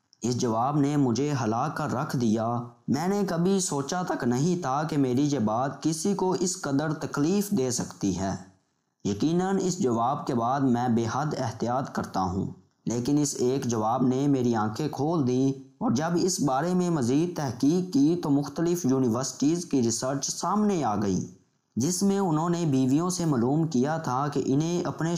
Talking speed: 180 wpm